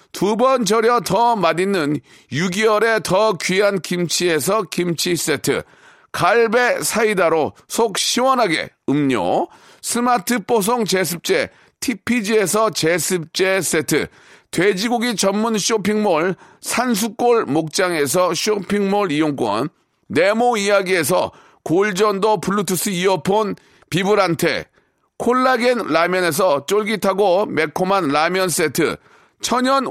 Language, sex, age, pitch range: Korean, male, 40-59, 180-230 Hz